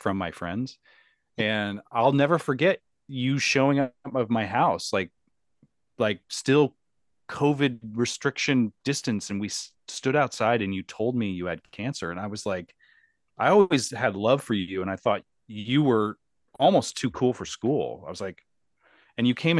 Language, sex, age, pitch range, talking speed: English, male, 30-49, 105-145 Hz, 170 wpm